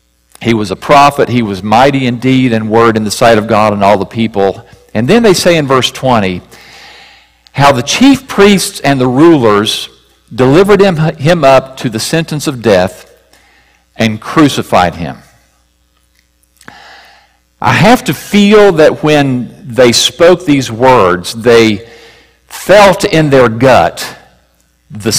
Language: English